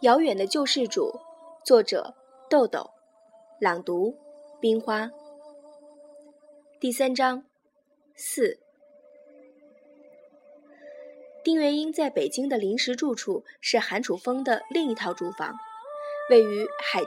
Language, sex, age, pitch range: Chinese, female, 20-39, 235-300 Hz